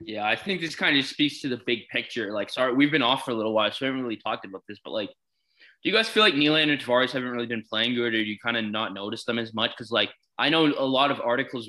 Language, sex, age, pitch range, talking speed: English, male, 20-39, 115-145 Hz, 310 wpm